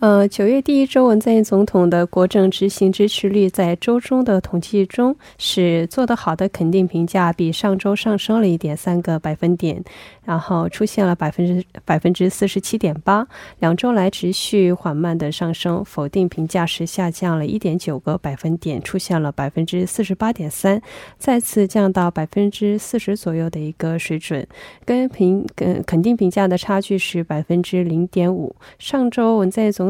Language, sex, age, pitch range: Korean, female, 20-39, 165-205 Hz